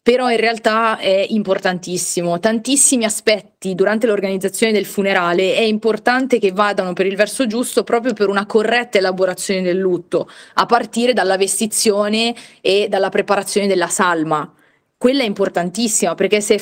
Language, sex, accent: Italian, female, native